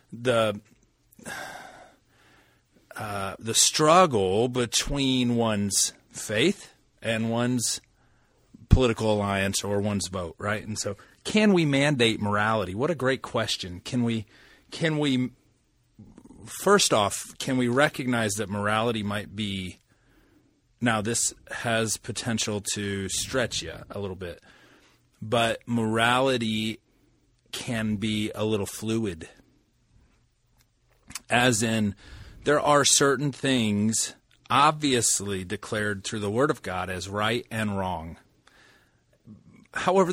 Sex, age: male, 30-49